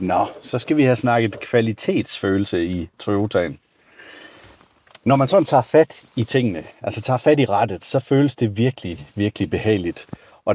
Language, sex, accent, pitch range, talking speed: Danish, male, native, 105-150 Hz, 165 wpm